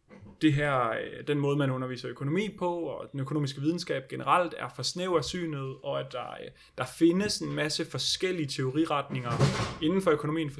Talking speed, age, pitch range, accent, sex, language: 165 wpm, 30-49, 135-165 Hz, native, male, Danish